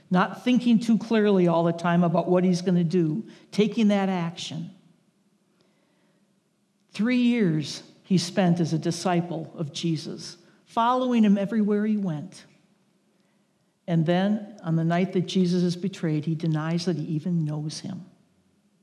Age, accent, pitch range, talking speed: 60-79, American, 170-195 Hz, 145 wpm